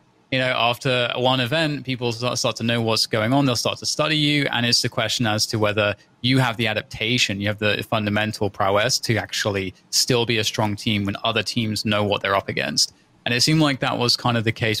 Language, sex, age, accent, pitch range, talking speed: English, male, 20-39, British, 110-130 Hz, 235 wpm